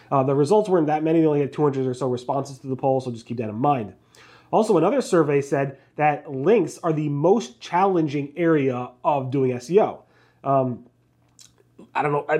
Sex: male